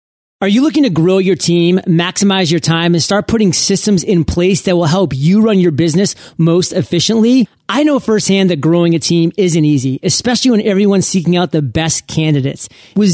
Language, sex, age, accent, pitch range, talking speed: English, male, 40-59, American, 165-210 Hz, 195 wpm